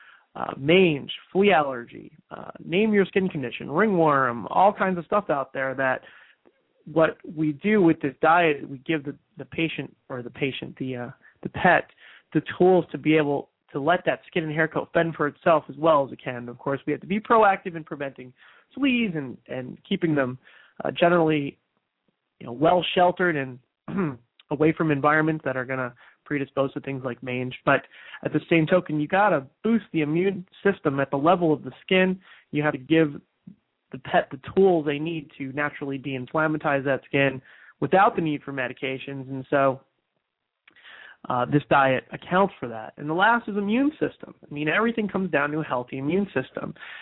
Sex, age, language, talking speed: male, 30-49, English, 190 wpm